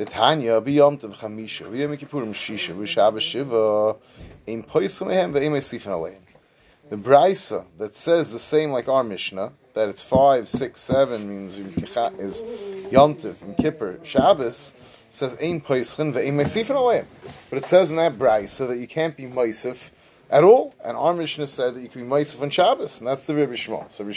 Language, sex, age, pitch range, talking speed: English, male, 30-49, 115-155 Hz, 125 wpm